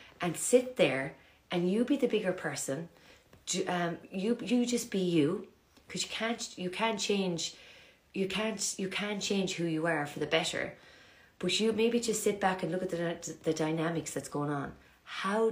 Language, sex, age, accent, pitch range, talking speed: English, female, 30-49, Irish, 165-205 Hz, 190 wpm